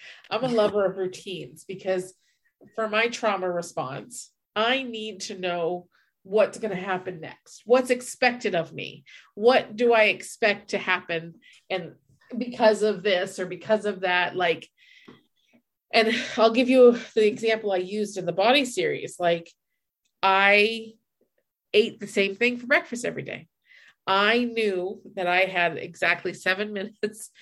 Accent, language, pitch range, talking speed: American, English, 185-230 Hz, 150 wpm